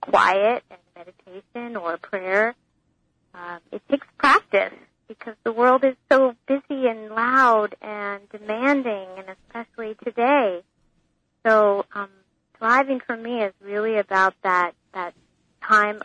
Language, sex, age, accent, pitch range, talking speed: English, female, 40-59, American, 185-220 Hz, 125 wpm